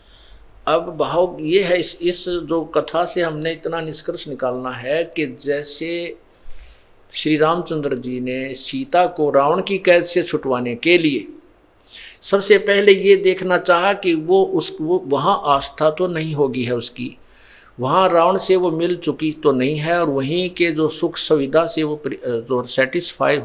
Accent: native